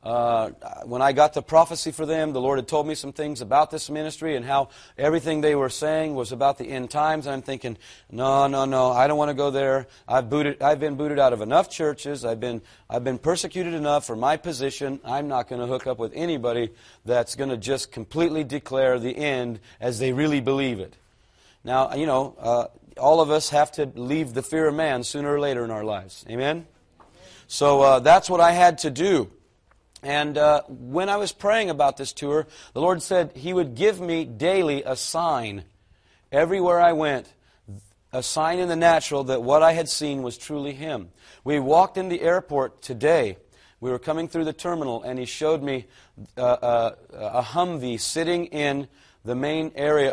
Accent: American